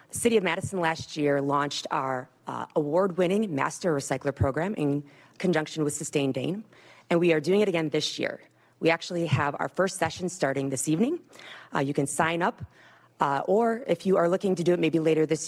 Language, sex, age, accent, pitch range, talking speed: English, female, 30-49, American, 140-175 Hz, 200 wpm